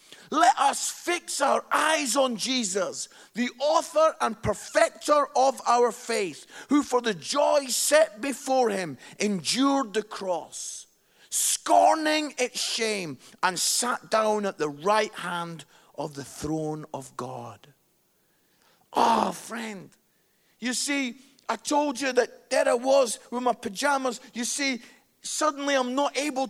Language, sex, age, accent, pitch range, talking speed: English, male, 50-69, British, 225-285 Hz, 135 wpm